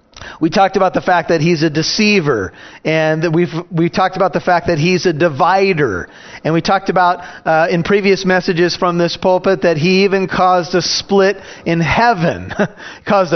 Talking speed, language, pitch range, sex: 180 wpm, English, 155-190 Hz, male